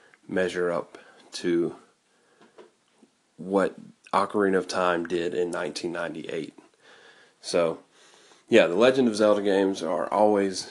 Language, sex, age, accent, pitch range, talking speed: English, male, 30-49, American, 90-105 Hz, 105 wpm